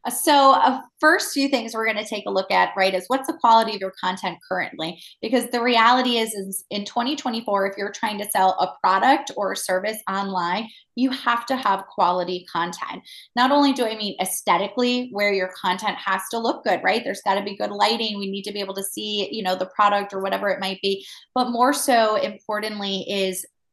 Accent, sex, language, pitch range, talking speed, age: American, female, English, 190-225 Hz, 215 wpm, 20-39